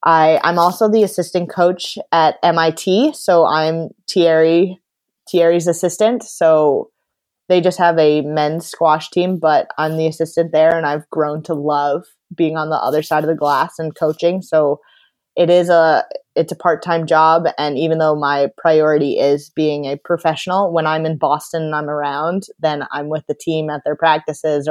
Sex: female